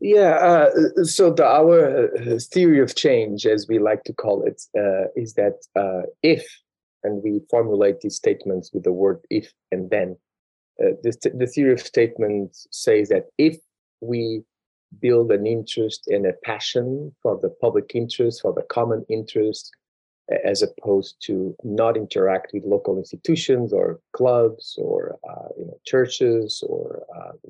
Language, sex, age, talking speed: English, male, 30-49, 155 wpm